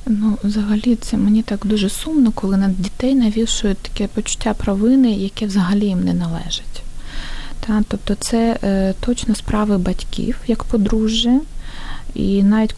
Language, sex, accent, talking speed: Ukrainian, female, native, 140 wpm